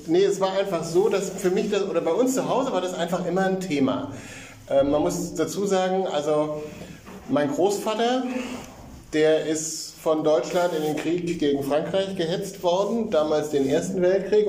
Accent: German